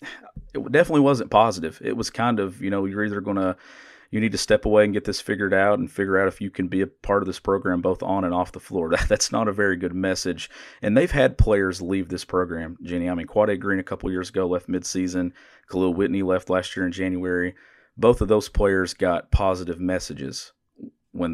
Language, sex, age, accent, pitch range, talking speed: English, male, 40-59, American, 90-100 Hz, 230 wpm